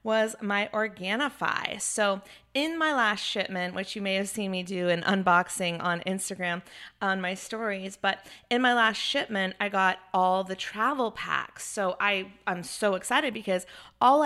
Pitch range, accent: 185-210 Hz, American